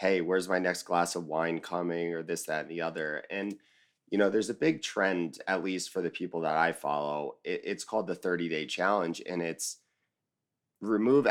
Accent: American